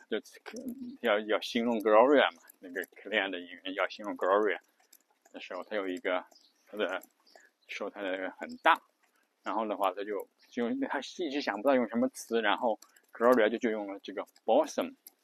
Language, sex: Chinese, male